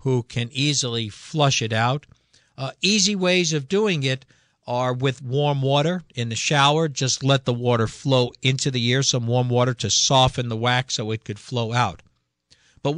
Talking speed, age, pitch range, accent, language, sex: 185 wpm, 50-69, 115-145 Hz, American, English, male